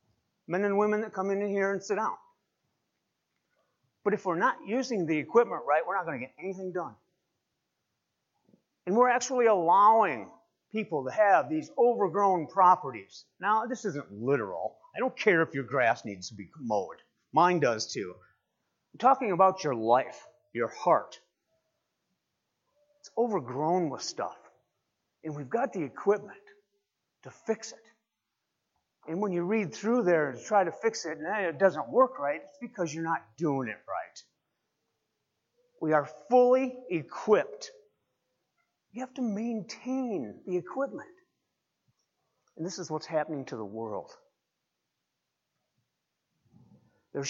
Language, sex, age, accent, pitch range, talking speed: English, male, 50-69, American, 155-240 Hz, 145 wpm